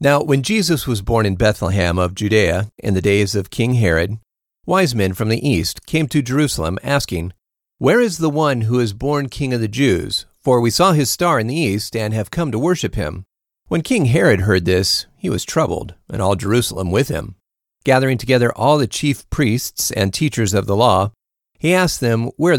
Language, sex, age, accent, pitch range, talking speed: English, male, 40-59, American, 100-140 Hz, 205 wpm